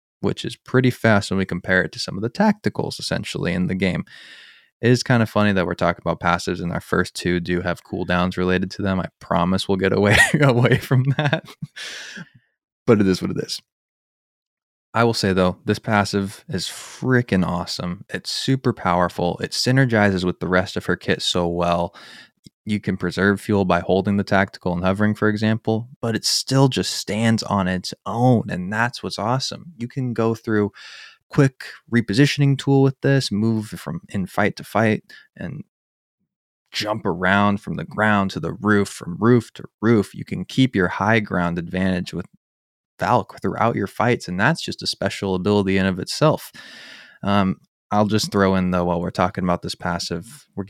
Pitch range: 90-115 Hz